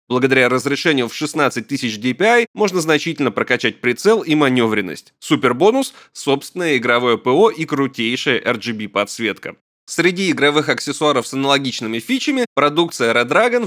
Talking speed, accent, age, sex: 125 wpm, native, 20-39, male